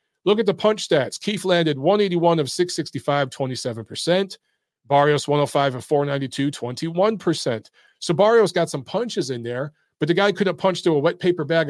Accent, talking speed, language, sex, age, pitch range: American, 160 wpm, English, male, 40-59, 140-185 Hz